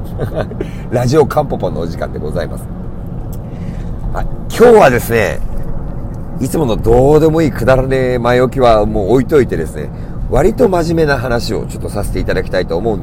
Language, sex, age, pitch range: Japanese, male, 50-69, 95-155 Hz